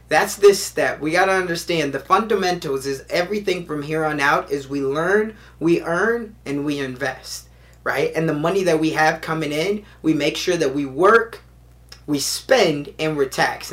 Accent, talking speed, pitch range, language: American, 190 wpm, 140-185 Hz, English